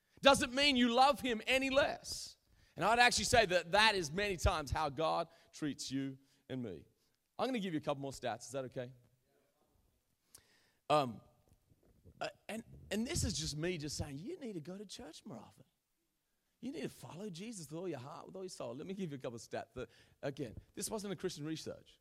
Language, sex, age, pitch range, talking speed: English, male, 30-49, 130-185 Hz, 215 wpm